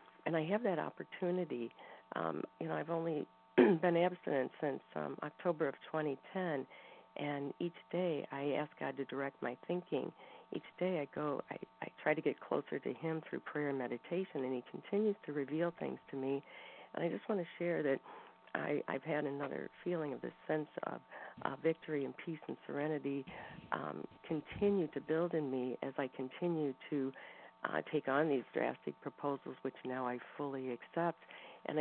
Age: 50-69